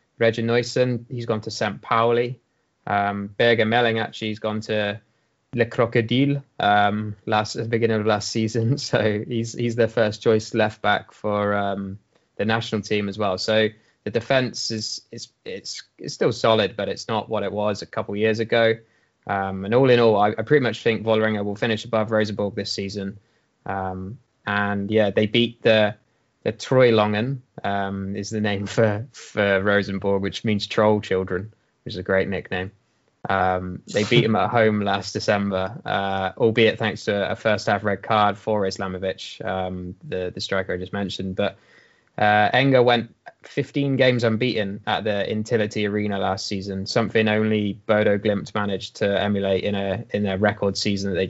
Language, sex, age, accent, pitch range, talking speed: English, male, 20-39, British, 100-115 Hz, 180 wpm